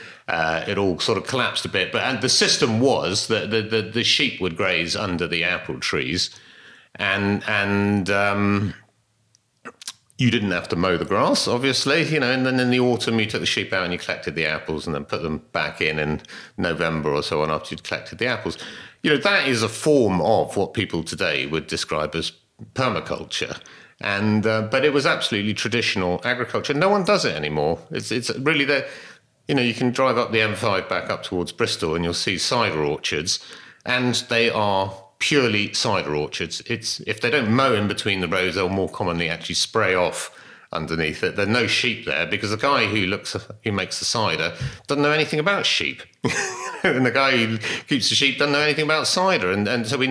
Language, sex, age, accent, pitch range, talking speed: English, male, 50-69, British, 90-125 Hz, 210 wpm